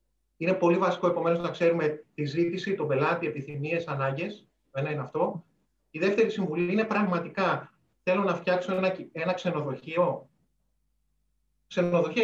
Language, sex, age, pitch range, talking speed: Greek, male, 30-49, 155-190 Hz, 130 wpm